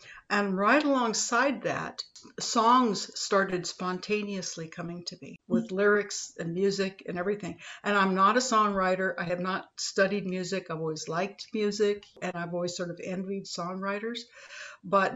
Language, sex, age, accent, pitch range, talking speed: English, female, 60-79, American, 175-200 Hz, 150 wpm